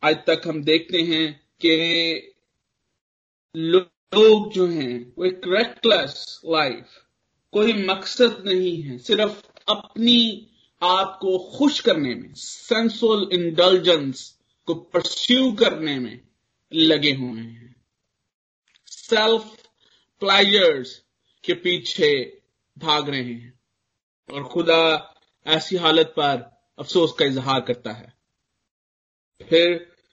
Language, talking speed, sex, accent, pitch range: Hindi, 100 wpm, male, native, 155-220 Hz